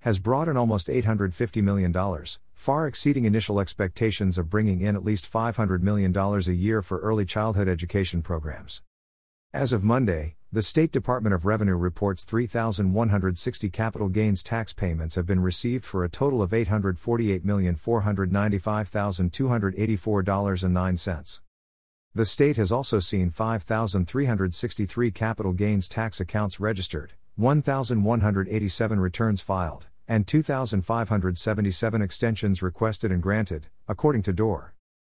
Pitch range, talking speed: 90-110 Hz, 120 wpm